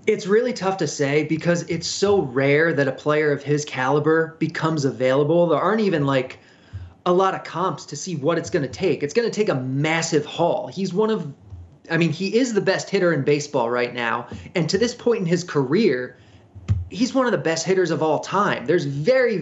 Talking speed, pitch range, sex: 220 wpm, 135-170 Hz, male